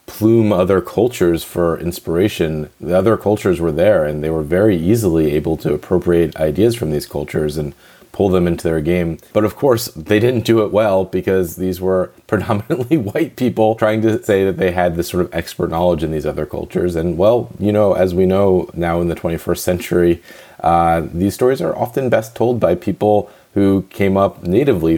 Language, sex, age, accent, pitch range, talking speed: English, male, 30-49, American, 85-110 Hz, 195 wpm